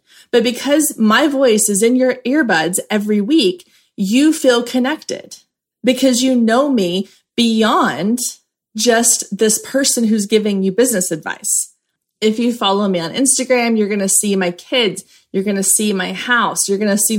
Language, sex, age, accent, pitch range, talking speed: English, female, 20-39, American, 200-255 Hz, 170 wpm